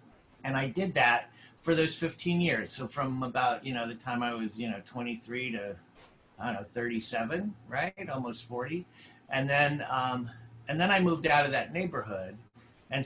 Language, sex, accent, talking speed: English, male, American, 185 wpm